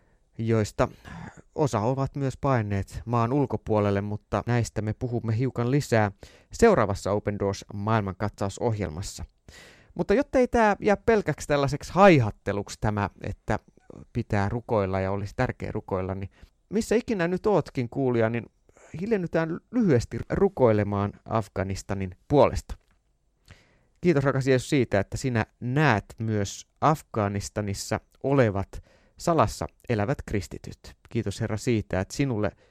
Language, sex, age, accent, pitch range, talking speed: Finnish, male, 30-49, native, 95-120 Hz, 115 wpm